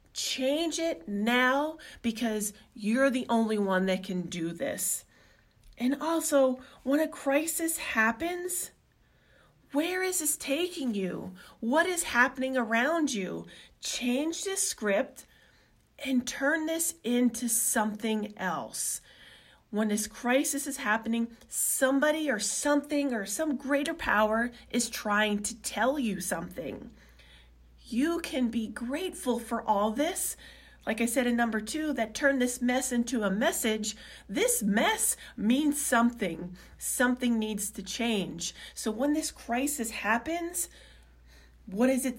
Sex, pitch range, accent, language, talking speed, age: female, 210-280 Hz, American, English, 130 wpm, 30-49